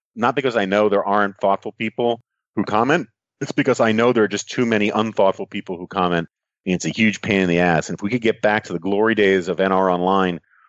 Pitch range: 95-125 Hz